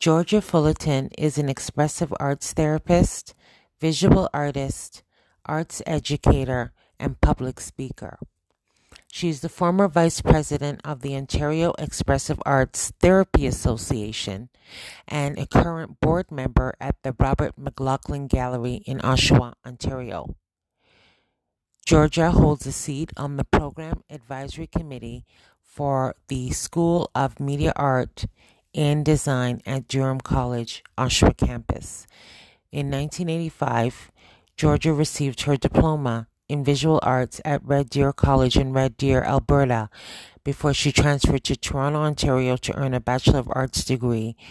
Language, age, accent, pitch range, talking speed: English, 40-59, American, 125-150 Hz, 125 wpm